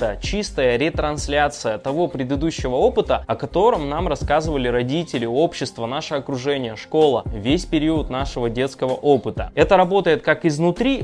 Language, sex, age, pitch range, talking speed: Russian, male, 20-39, 135-180 Hz, 125 wpm